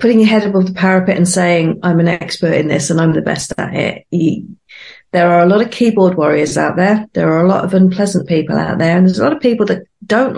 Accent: British